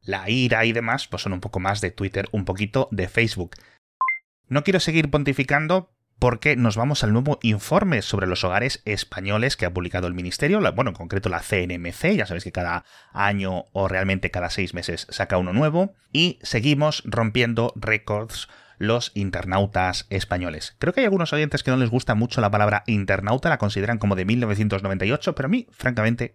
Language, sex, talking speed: Spanish, male, 185 wpm